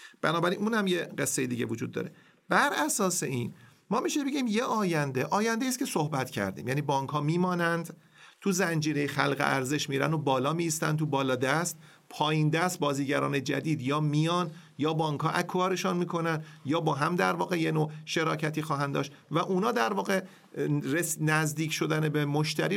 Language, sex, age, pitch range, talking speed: Persian, male, 40-59, 140-180 Hz, 170 wpm